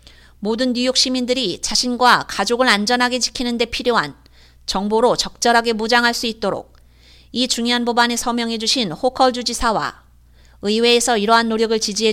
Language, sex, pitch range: Korean, female, 200-250 Hz